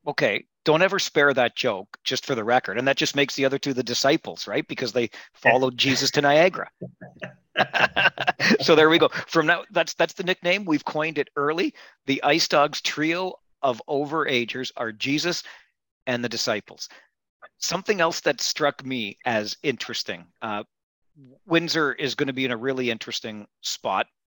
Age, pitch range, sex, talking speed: 50-69, 115-145 Hz, male, 175 wpm